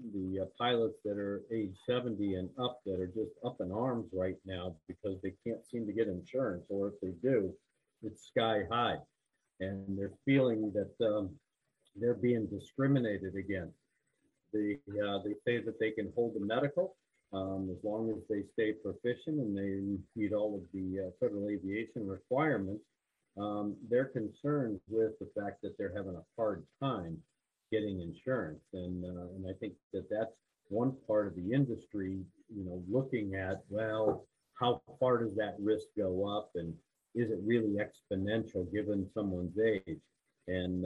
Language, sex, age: English, male, 50-69